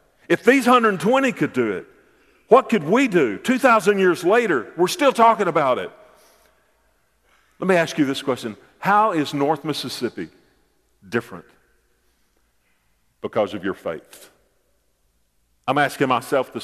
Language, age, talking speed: English, 50-69, 135 wpm